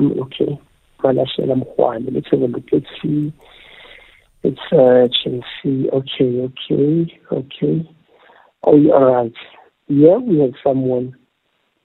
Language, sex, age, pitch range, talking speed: English, male, 60-79, 125-150 Hz, 85 wpm